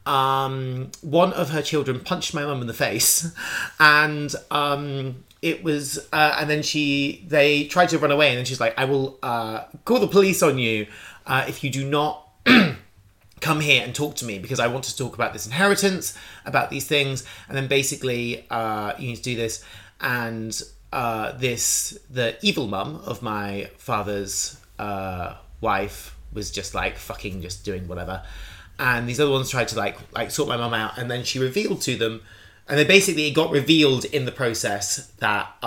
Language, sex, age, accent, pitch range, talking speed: English, male, 30-49, British, 105-140 Hz, 190 wpm